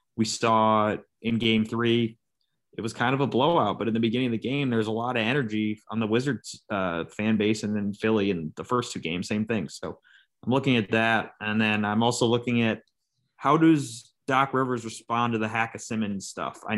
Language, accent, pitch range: English, American, 110-120 Hz